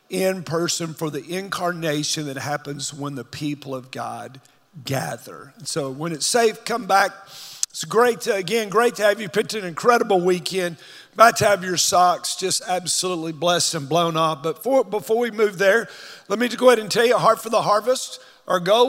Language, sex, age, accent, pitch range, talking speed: English, male, 50-69, American, 175-225 Hz, 195 wpm